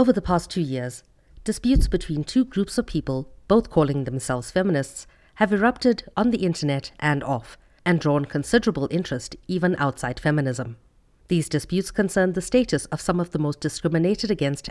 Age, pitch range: 50-69, 140-190 Hz